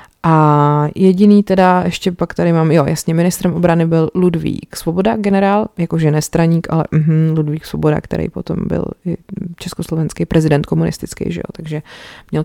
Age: 30-49